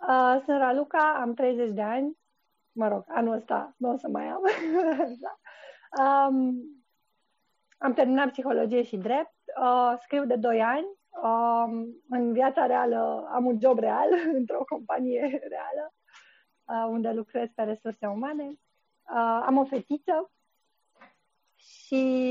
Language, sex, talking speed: Romanian, female, 135 wpm